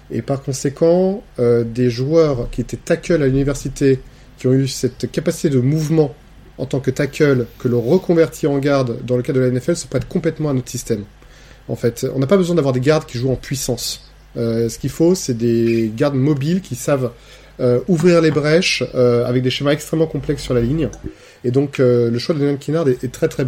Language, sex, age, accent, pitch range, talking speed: French, male, 30-49, French, 125-155 Hz, 220 wpm